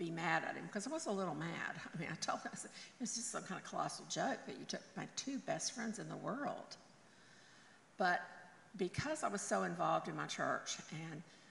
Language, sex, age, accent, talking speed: English, female, 50-69, American, 230 wpm